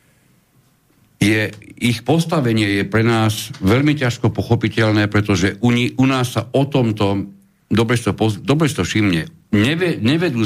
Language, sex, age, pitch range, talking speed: Slovak, male, 60-79, 90-120 Hz, 120 wpm